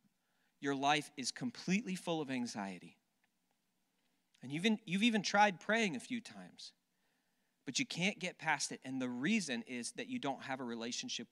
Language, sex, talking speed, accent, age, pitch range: English, male, 175 wpm, American, 40-59, 155-225 Hz